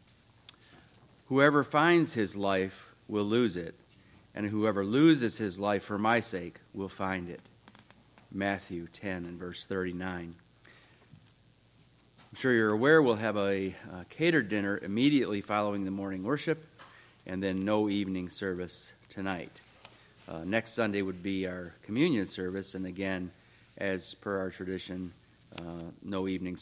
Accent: American